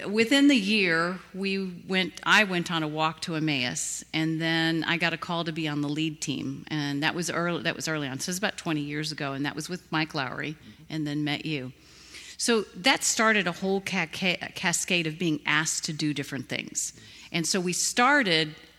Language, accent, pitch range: English, American, 155-200 Hz